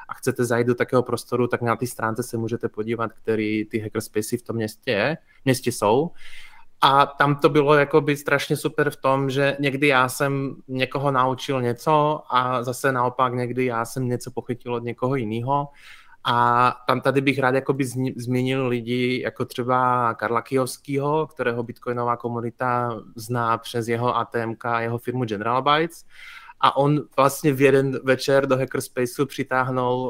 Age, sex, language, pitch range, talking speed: 20-39, male, Czech, 120-135 Hz, 160 wpm